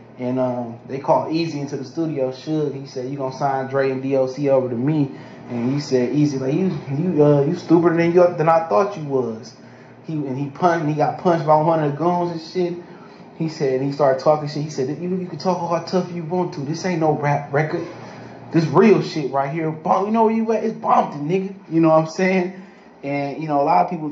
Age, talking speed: 20-39, 245 wpm